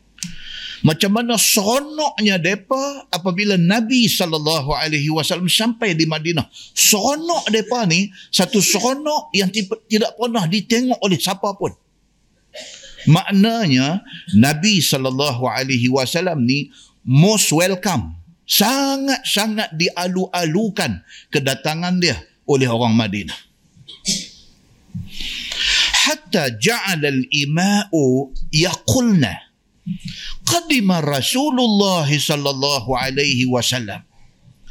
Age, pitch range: 50-69, 155-225 Hz